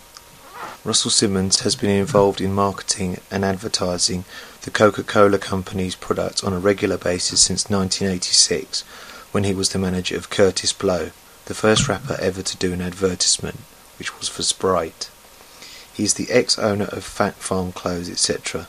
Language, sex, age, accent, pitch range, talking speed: English, male, 30-49, British, 95-105 Hz, 155 wpm